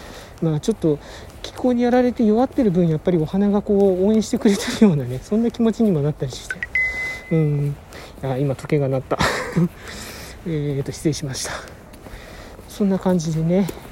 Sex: male